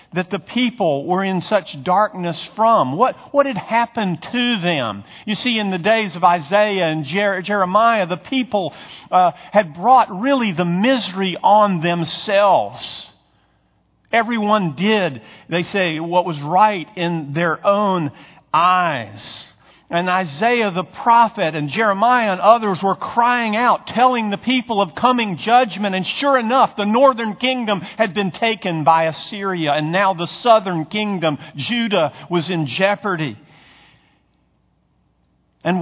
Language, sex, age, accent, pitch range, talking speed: English, male, 50-69, American, 180-235 Hz, 140 wpm